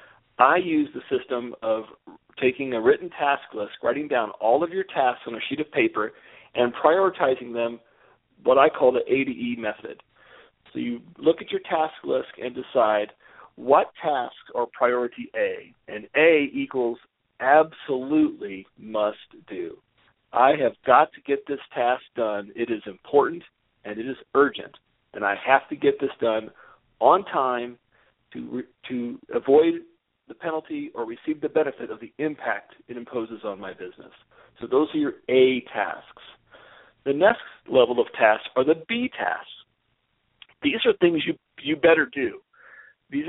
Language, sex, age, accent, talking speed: English, male, 40-59, American, 160 wpm